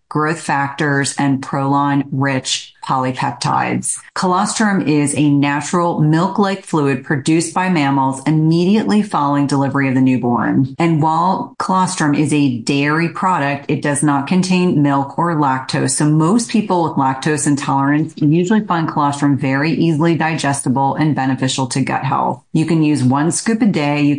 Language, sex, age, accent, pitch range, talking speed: English, female, 30-49, American, 140-165 Hz, 150 wpm